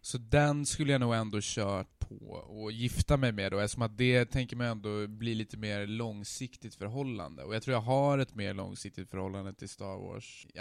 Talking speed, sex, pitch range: 215 wpm, male, 105-125 Hz